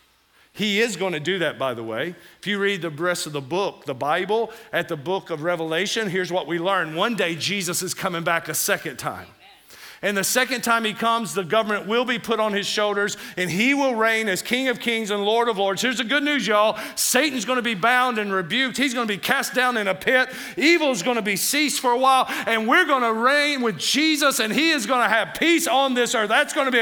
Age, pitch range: 50-69, 155-235 Hz